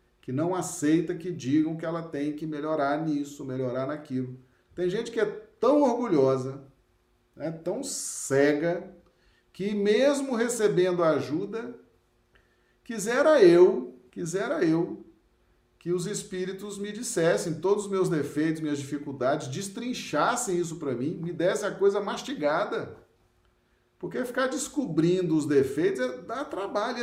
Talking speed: 125 wpm